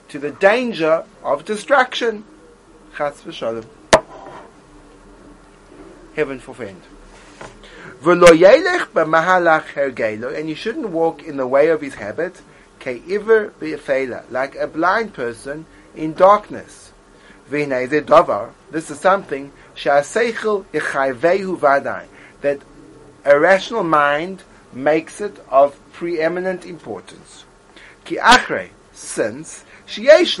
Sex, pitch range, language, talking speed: male, 150-190 Hz, English, 75 wpm